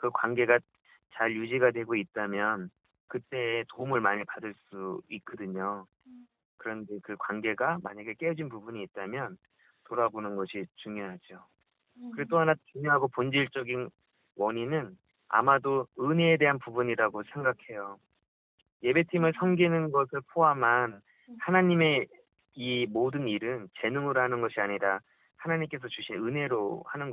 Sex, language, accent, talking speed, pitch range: male, English, Korean, 110 wpm, 110-160 Hz